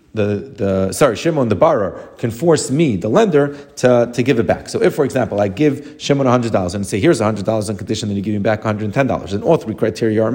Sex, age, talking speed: male, 30-49, 280 wpm